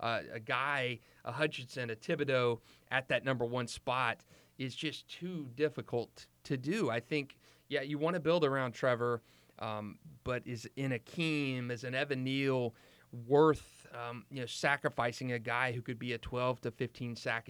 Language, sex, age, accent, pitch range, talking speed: English, male, 30-49, American, 115-130 Hz, 180 wpm